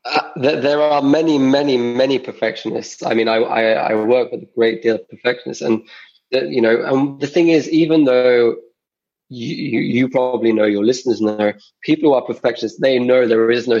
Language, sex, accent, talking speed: English, male, British, 190 wpm